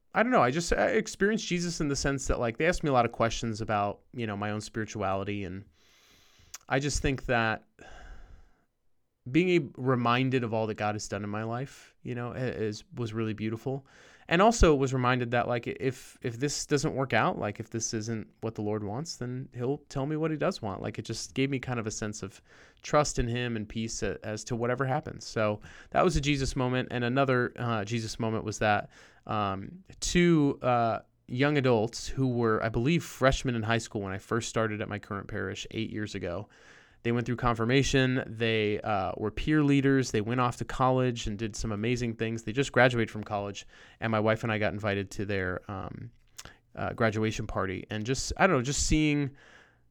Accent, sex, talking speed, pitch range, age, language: American, male, 210 wpm, 110-130 Hz, 30-49, English